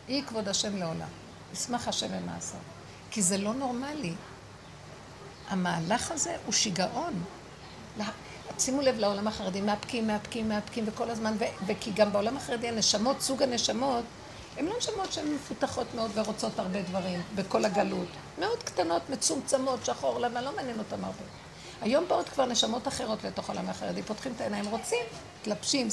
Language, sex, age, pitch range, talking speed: Hebrew, female, 50-69, 210-275 Hz, 155 wpm